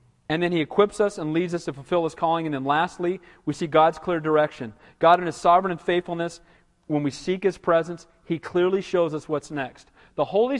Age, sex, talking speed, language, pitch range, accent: 40-59, male, 220 wpm, English, 150-220 Hz, American